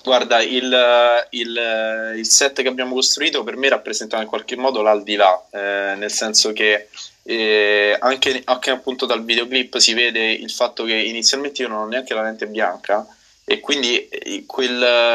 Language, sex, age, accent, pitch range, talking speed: Italian, male, 20-39, native, 110-130 Hz, 160 wpm